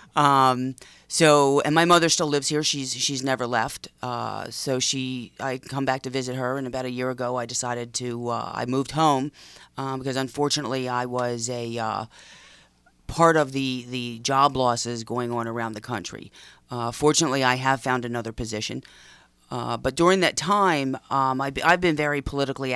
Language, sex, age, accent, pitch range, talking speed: English, female, 40-59, American, 120-140 Hz, 180 wpm